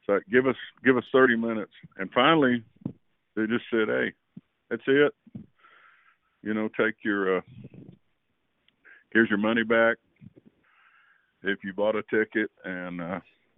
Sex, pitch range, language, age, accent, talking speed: male, 90-115 Hz, English, 60-79, American, 140 wpm